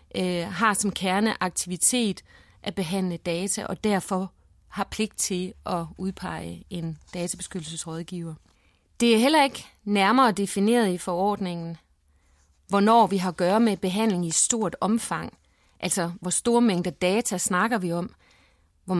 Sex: female